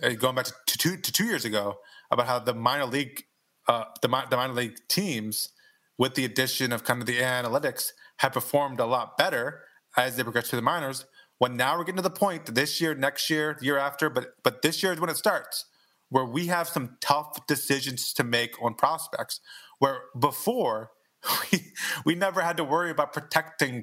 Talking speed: 205 wpm